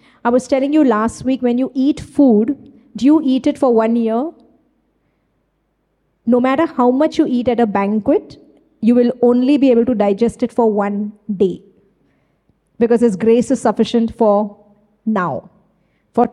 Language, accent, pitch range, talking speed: English, Indian, 215-265 Hz, 165 wpm